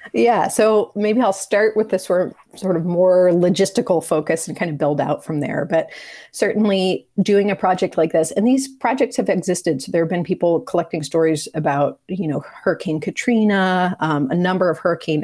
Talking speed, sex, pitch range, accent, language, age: 195 wpm, female, 155-185 Hz, American, English, 30-49